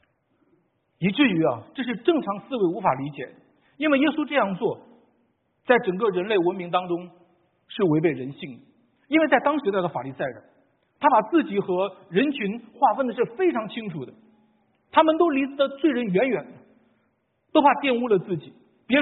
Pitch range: 170-275 Hz